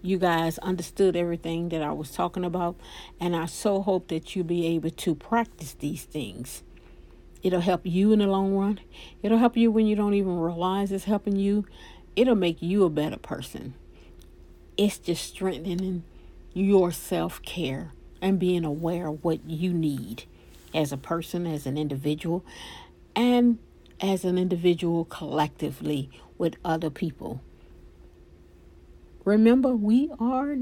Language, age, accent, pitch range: English, 60-79, American, 155-215 Hz